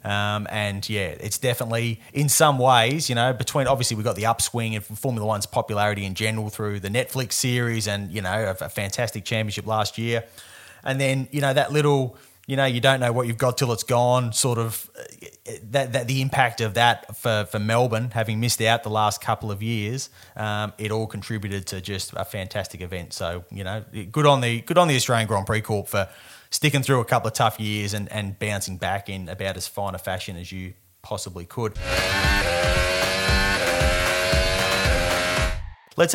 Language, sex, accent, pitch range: English, male, Australian, 105-125 Hz